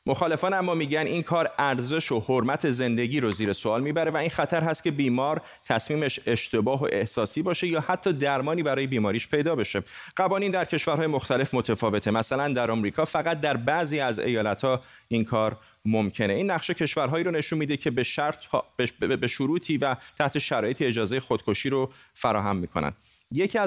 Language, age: Persian, 30-49